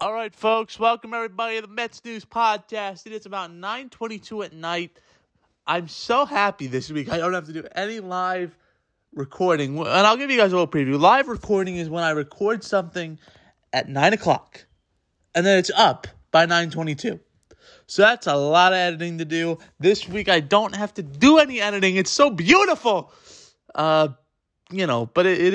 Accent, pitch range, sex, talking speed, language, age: American, 150-205 Hz, male, 180 wpm, English, 20-39